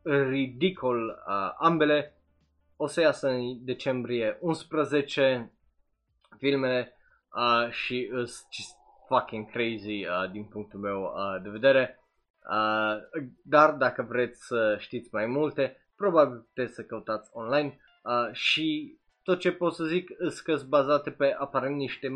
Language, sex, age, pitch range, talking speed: Romanian, male, 20-39, 110-145 Hz, 125 wpm